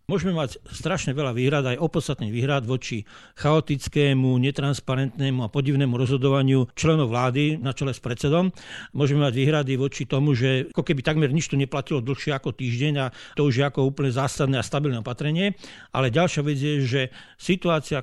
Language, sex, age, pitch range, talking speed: Slovak, male, 60-79, 130-160 Hz, 170 wpm